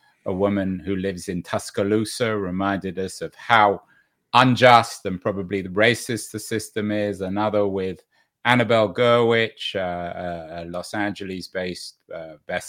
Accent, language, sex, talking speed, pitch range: British, English, male, 135 wpm, 95-115 Hz